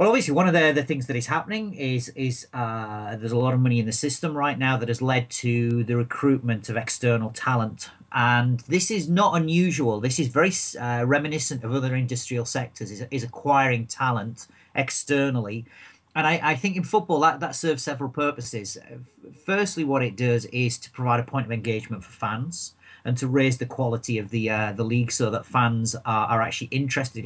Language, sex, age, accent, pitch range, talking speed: English, male, 40-59, British, 115-140 Hz, 200 wpm